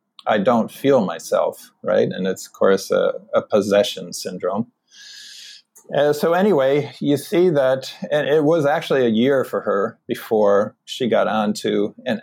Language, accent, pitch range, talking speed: English, American, 105-130 Hz, 155 wpm